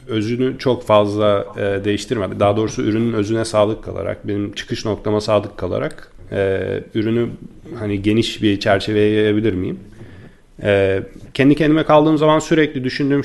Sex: male